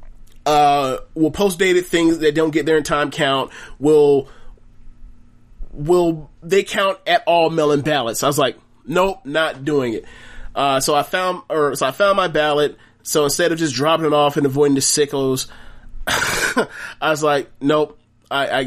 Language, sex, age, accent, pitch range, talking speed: English, male, 30-49, American, 120-150 Hz, 175 wpm